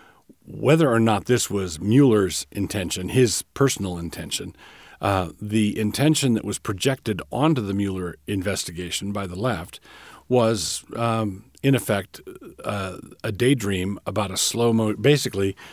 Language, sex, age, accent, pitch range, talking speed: English, male, 50-69, American, 95-115 Hz, 125 wpm